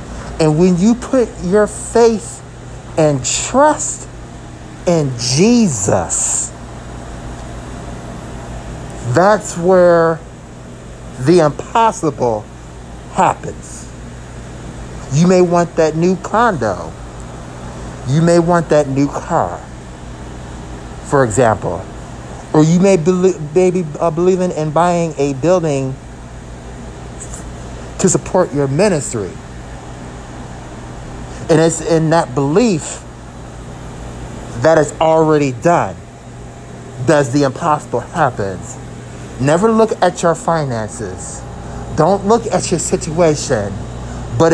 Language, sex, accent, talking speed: English, male, American, 90 wpm